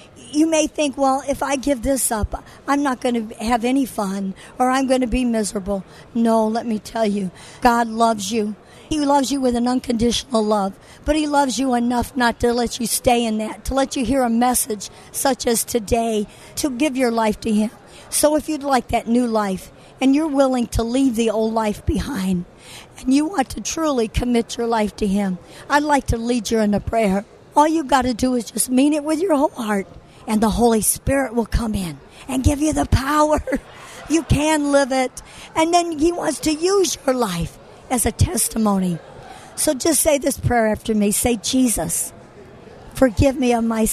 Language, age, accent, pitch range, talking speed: English, 60-79, American, 215-270 Hz, 205 wpm